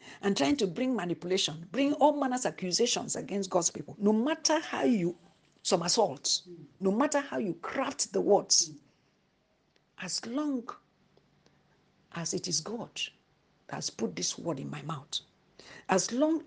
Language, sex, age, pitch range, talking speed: English, female, 60-79, 160-220 Hz, 150 wpm